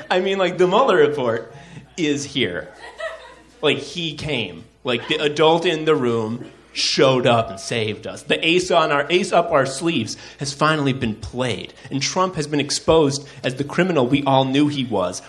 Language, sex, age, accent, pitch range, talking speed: English, male, 30-49, American, 130-185 Hz, 185 wpm